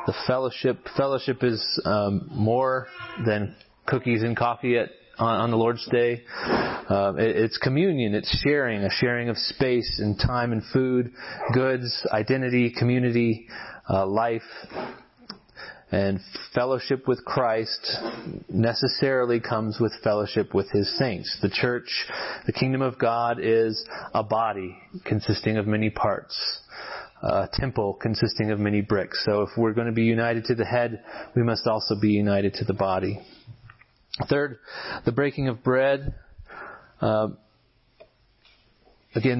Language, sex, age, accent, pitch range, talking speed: English, male, 30-49, American, 110-125 Hz, 135 wpm